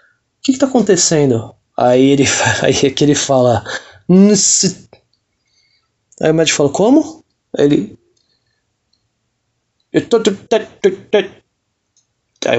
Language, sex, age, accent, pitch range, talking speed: Portuguese, male, 20-39, Brazilian, 160-240 Hz, 90 wpm